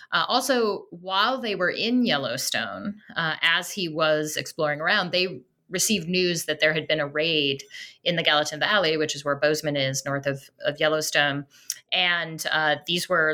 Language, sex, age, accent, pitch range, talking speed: English, female, 30-49, American, 150-180 Hz, 175 wpm